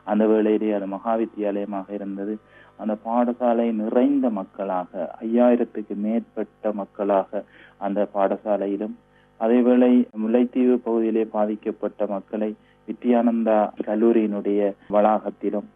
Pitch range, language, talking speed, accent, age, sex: 105-115 Hz, Tamil, 90 wpm, native, 30-49, male